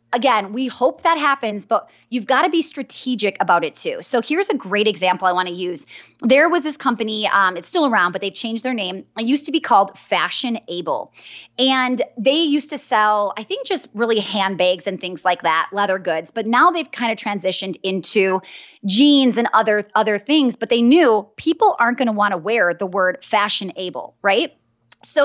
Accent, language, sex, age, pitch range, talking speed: American, English, female, 20-39, 195-260 Hz, 205 wpm